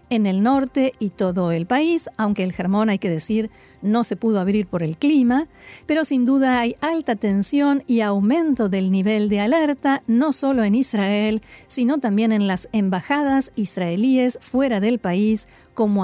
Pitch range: 195-255 Hz